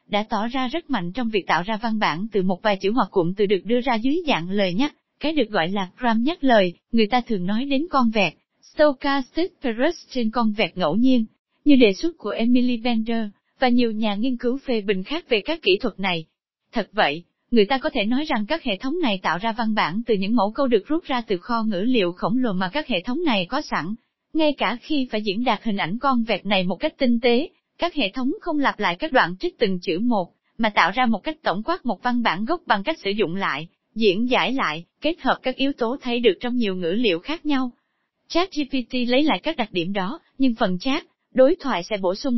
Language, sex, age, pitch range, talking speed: Vietnamese, female, 20-39, 205-275 Hz, 250 wpm